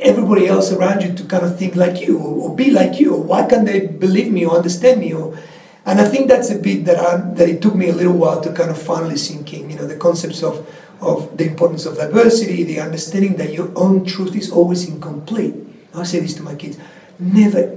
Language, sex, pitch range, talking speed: English, male, 170-230 Hz, 245 wpm